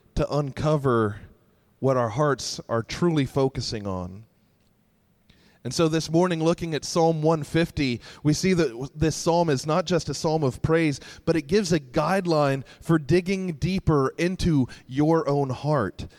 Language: English